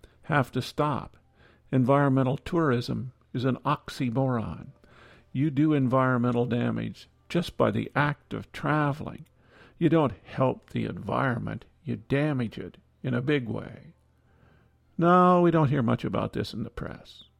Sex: male